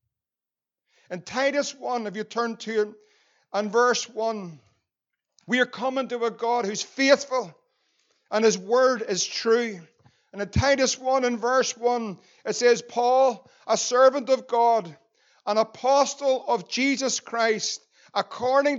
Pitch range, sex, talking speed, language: 225-260 Hz, male, 140 wpm, English